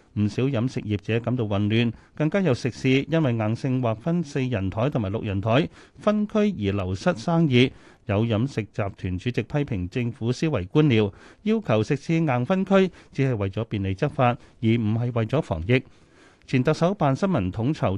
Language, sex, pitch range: Chinese, male, 105-145 Hz